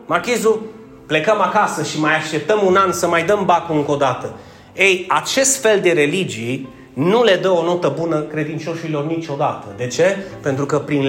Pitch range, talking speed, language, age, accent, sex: 160-235 Hz, 180 wpm, Romanian, 30-49, native, male